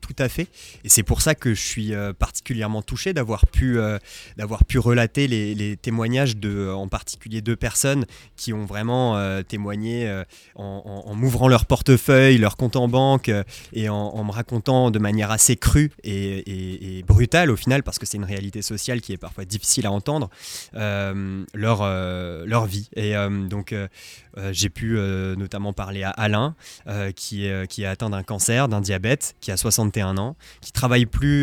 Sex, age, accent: male, 20-39, French